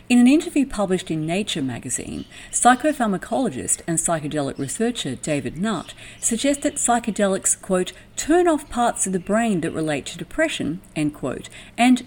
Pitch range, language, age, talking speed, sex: 150-235 Hz, English, 50-69, 150 wpm, female